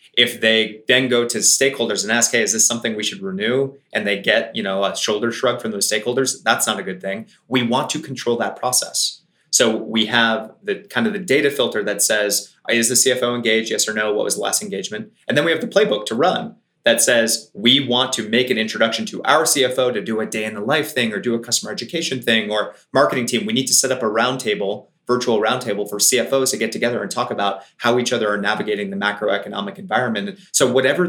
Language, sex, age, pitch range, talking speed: English, male, 30-49, 105-130 Hz, 235 wpm